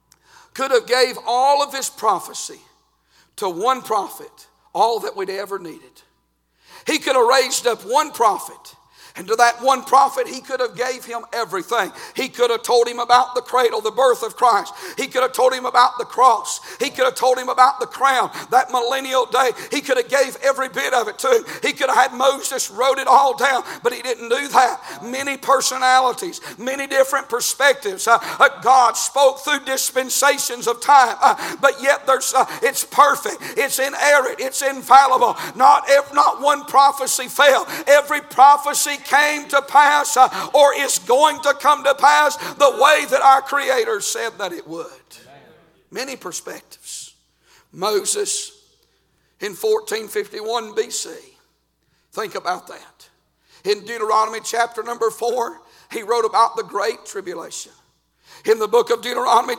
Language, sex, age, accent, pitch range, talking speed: English, male, 50-69, American, 255-390 Hz, 165 wpm